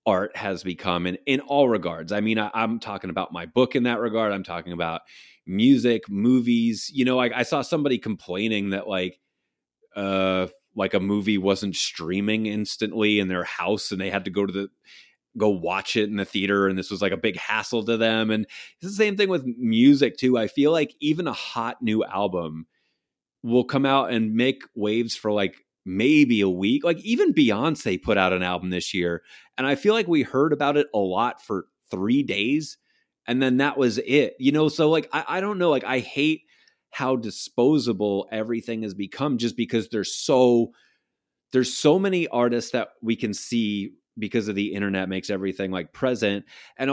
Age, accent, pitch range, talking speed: 30-49, American, 100-135 Hz, 200 wpm